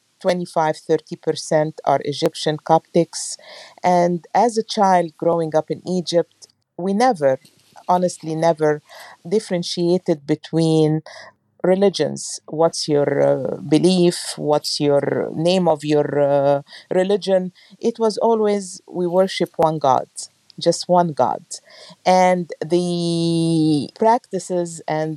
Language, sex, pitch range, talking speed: English, female, 150-180 Hz, 105 wpm